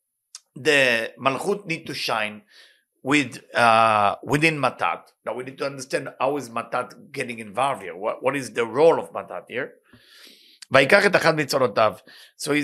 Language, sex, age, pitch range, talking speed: English, male, 50-69, 140-195 Hz, 140 wpm